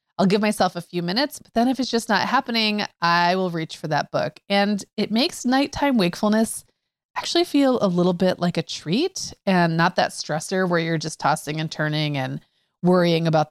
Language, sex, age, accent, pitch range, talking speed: English, female, 30-49, American, 160-210 Hz, 200 wpm